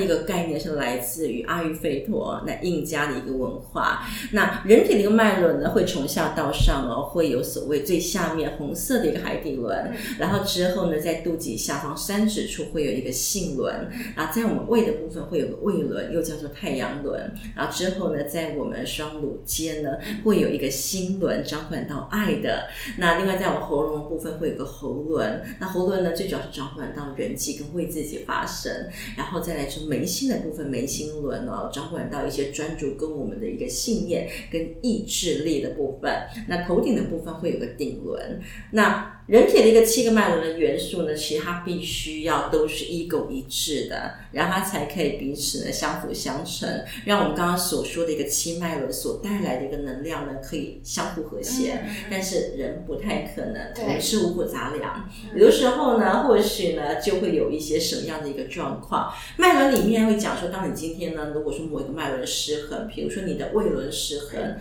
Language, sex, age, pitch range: Chinese, female, 30-49, 150-205 Hz